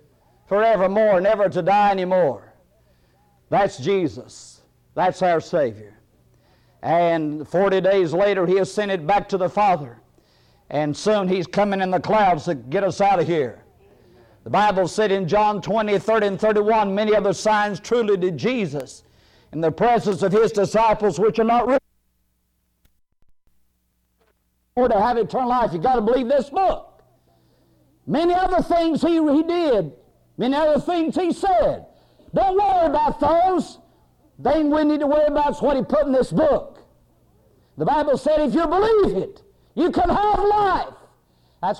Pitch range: 160-240 Hz